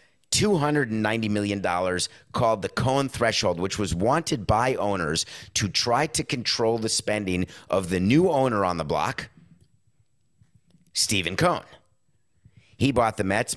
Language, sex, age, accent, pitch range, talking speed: English, male, 30-49, American, 90-110 Hz, 135 wpm